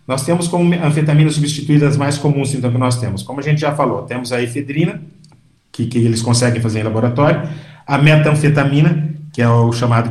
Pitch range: 125-150 Hz